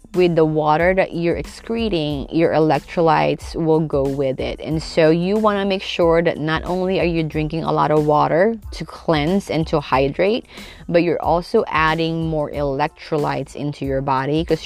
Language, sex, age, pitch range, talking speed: English, female, 20-39, 140-170 Hz, 175 wpm